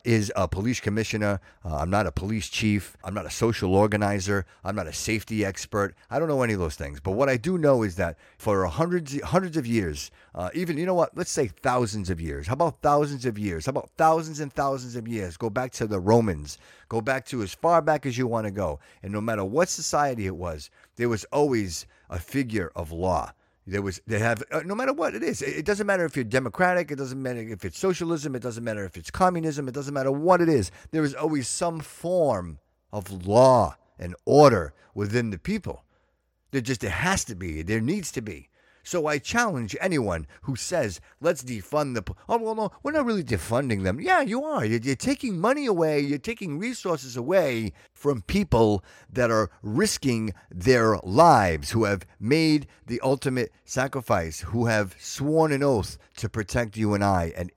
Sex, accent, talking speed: male, American, 210 wpm